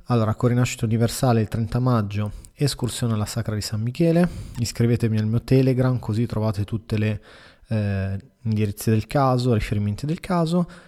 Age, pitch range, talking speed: 20-39, 110-130 Hz, 150 wpm